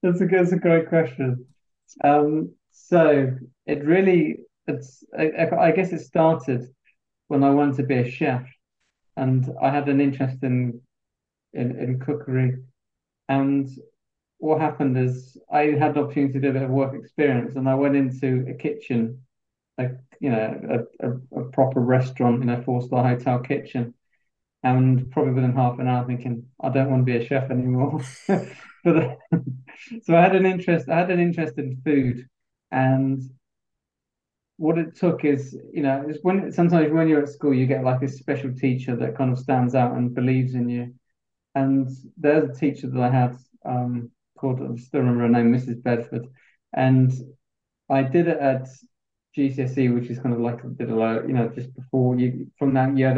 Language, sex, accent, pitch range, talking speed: English, male, British, 125-145 Hz, 185 wpm